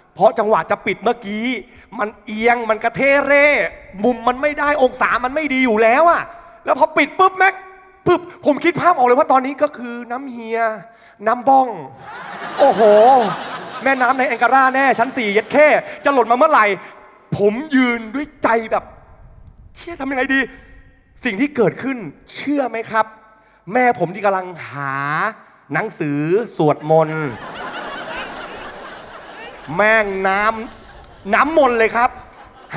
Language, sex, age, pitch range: Thai, male, 20-39, 220-295 Hz